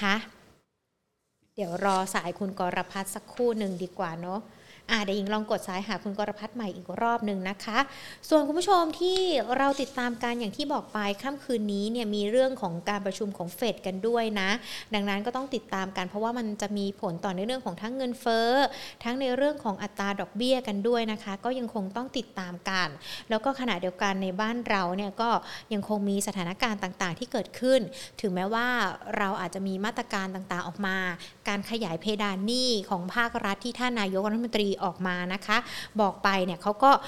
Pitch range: 195-245 Hz